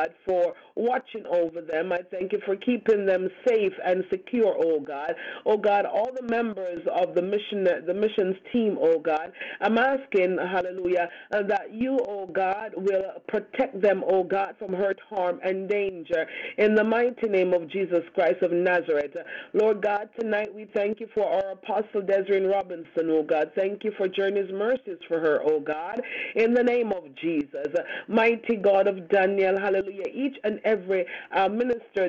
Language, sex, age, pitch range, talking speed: English, female, 40-59, 180-220 Hz, 170 wpm